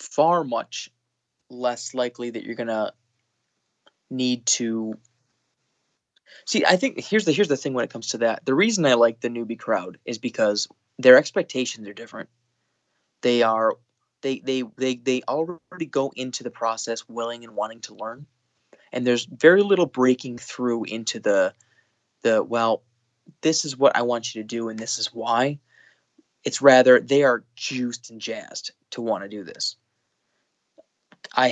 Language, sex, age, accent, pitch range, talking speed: English, male, 20-39, American, 115-130 Hz, 165 wpm